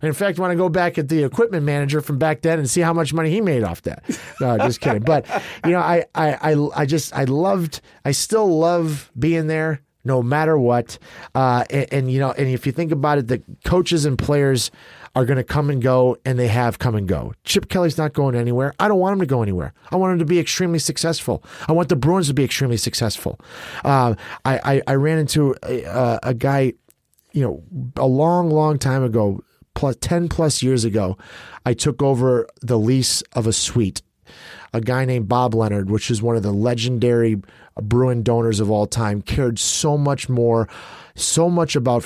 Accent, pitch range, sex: American, 115-150 Hz, male